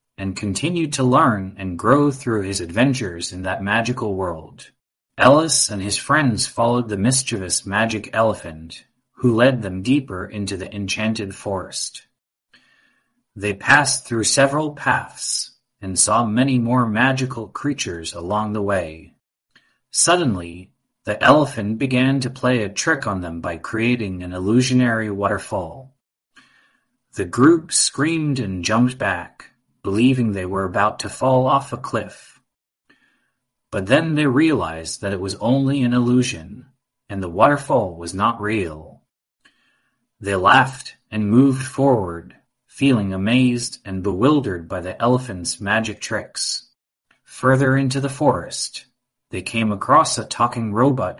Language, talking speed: English, 135 wpm